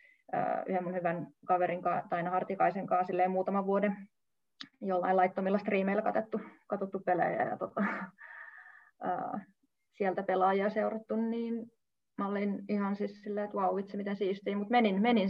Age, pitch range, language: 20-39, 180-210 Hz, Finnish